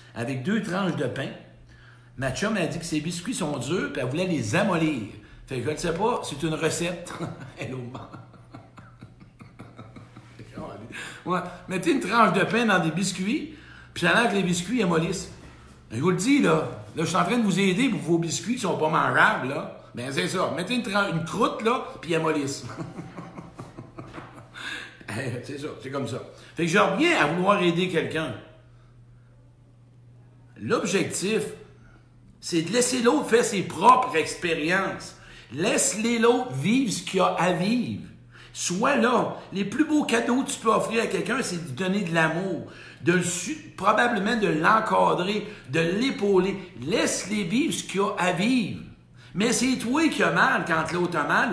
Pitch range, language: 150-210 Hz, French